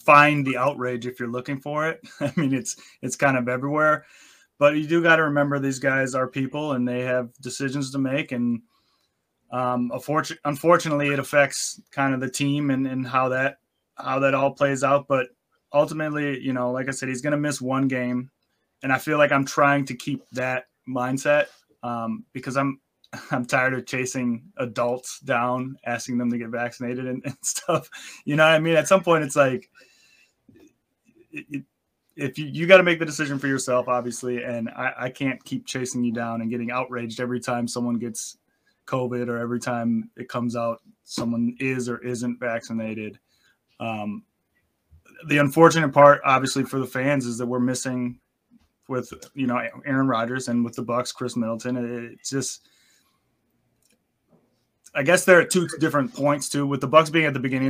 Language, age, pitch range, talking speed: English, 20-39, 125-145 Hz, 185 wpm